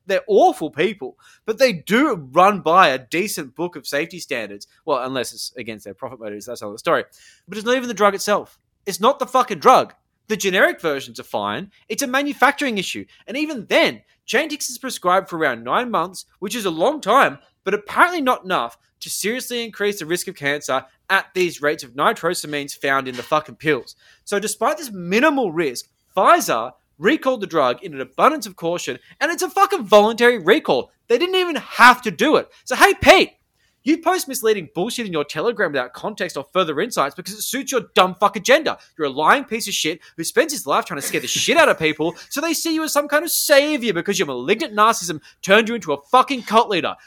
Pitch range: 165-265 Hz